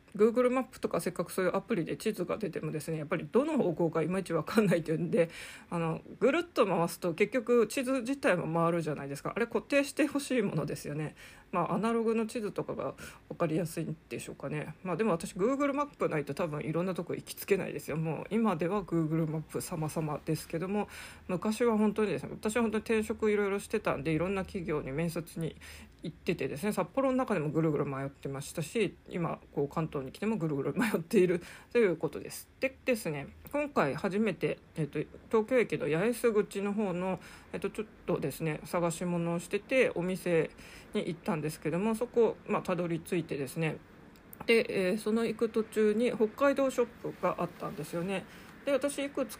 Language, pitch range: Japanese, 160-225 Hz